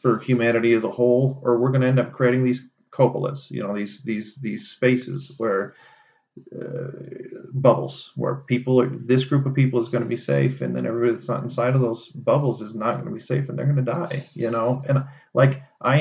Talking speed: 225 wpm